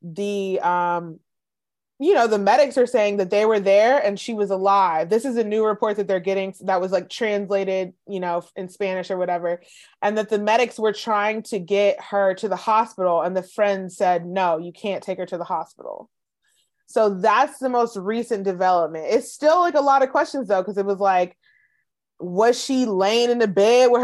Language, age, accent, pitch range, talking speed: English, 20-39, American, 185-240 Hz, 205 wpm